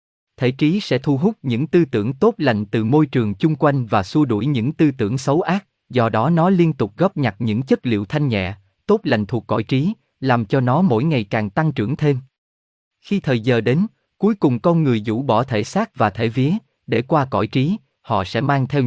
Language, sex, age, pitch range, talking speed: Vietnamese, male, 20-39, 110-155 Hz, 230 wpm